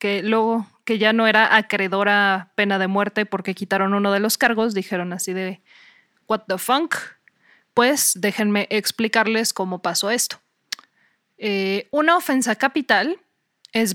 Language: Spanish